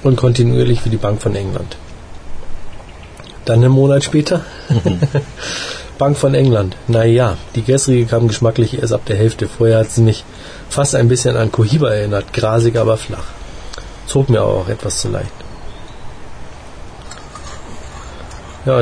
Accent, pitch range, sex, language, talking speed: German, 95-130 Hz, male, German, 140 wpm